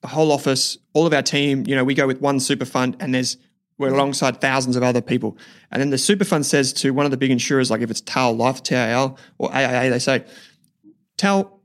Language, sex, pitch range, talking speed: English, male, 125-160 Hz, 235 wpm